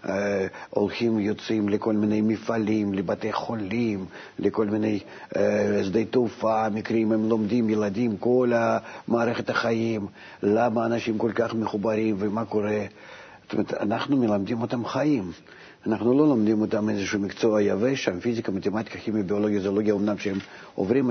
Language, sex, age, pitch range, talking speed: Hebrew, male, 50-69, 100-115 Hz, 140 wpm